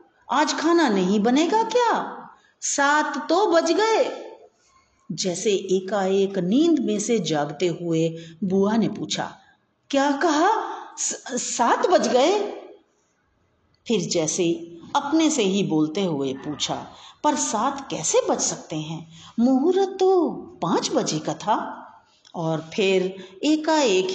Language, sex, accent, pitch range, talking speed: Hindi, female, native, 170-285 Hz, 120 wpm